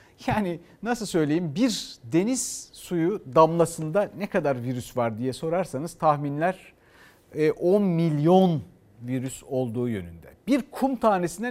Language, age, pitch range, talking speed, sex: Turkish, 60-79, 135-205 Hz, 115 wpm, male